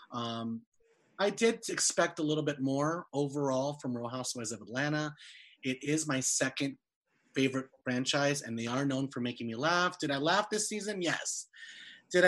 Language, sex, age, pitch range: English, male, 30-49, 135-180 Hz